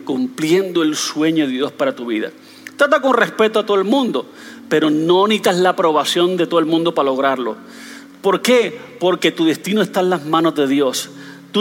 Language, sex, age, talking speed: Spanish, male, 40-59, 195 wpm